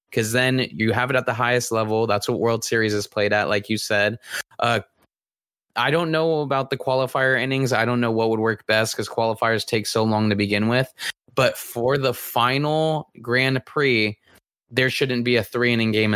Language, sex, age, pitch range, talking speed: English, male, 20-39, 110-135 Hz, 200 wpm